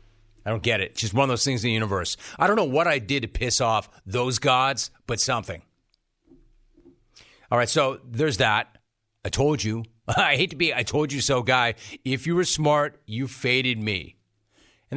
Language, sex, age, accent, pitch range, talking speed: English, male, 40-59, American, 110-140 Hz, 205 wpm